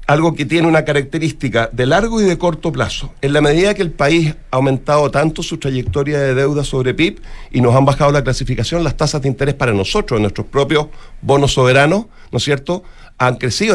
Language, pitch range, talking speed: Spanish, 125-160 Hz, 205 wpm